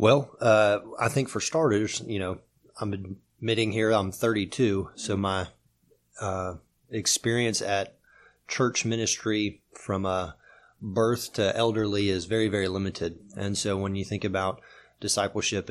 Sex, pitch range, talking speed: male, 95-110 Hz, 140 wpm